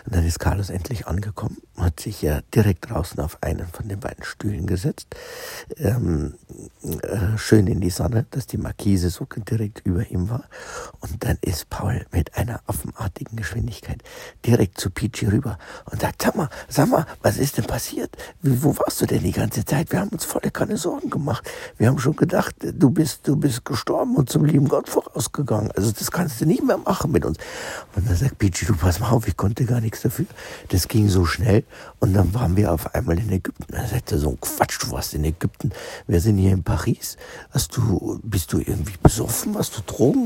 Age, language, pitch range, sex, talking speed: 60-79, German, 90-125 Hz, male, 210 wpm